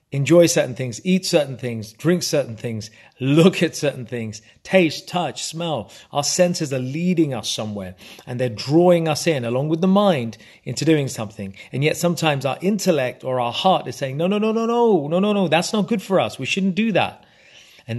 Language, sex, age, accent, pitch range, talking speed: English, male, 30-49, British, 130-170 Hz, 205 wpm